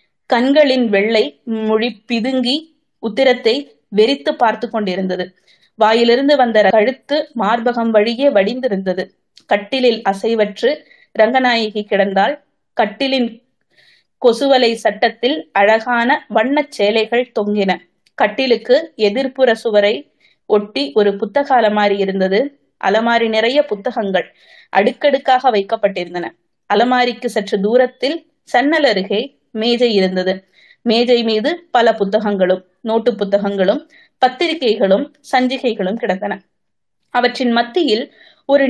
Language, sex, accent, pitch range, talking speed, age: Tamil, female, native, 210-265 Hz, 90 wpm, 20-39